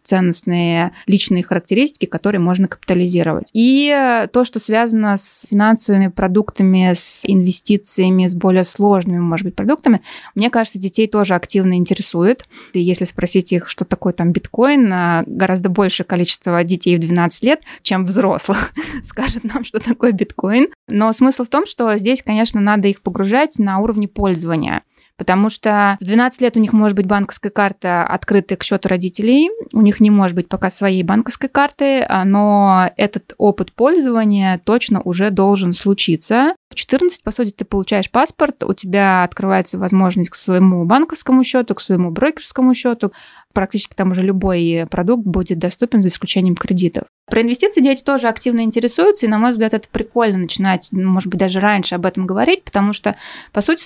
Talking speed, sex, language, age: 165 wpm, female, Russian, 20-39